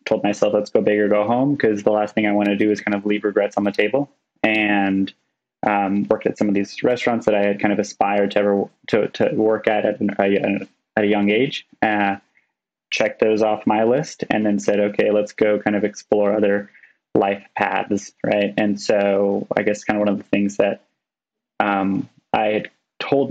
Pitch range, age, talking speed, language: 100-110 Hz, 20-39, 215 wpm, English